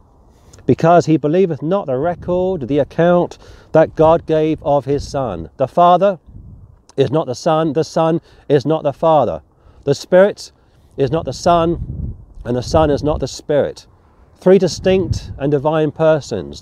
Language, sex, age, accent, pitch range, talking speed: English, male, 40-59, British, 120-165 Hz, 160 wpm